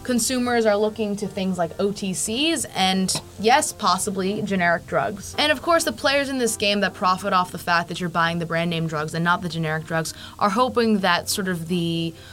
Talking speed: 210 wpm